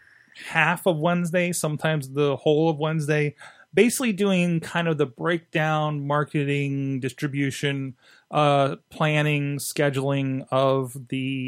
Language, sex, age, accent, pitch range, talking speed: English, male, 30-49, American, 130-160 Hz, 110 wpm